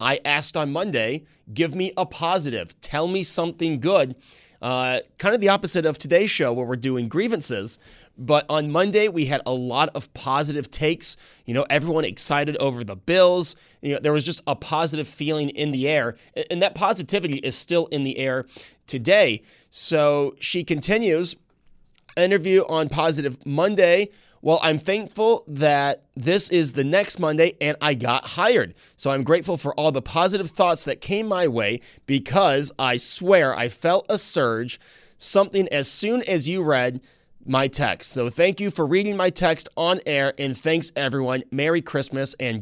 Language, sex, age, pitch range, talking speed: English, male, 30-49, 135-175 Hz, 175 wpm